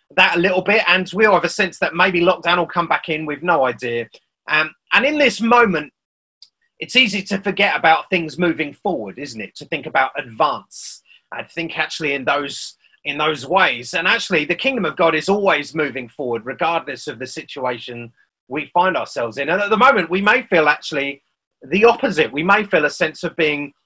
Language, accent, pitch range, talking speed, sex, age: English, British, 155-200 Hz, 205 wpm, male, 30-49